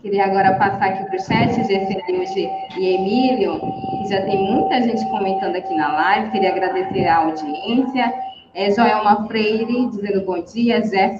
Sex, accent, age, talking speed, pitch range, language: female, Brazilian, 20-39, 150 wpm, 195-245 Hz, Portuguese